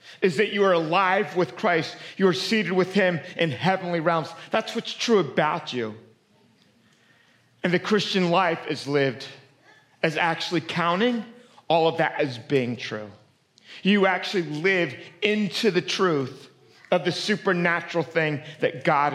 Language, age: English, 40-59